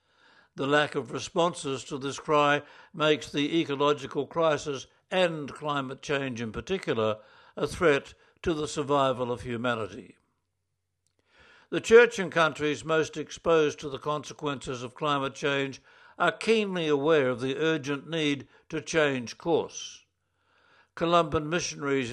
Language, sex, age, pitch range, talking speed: English, male, 60-79, 130-160 Hz, 125 wpm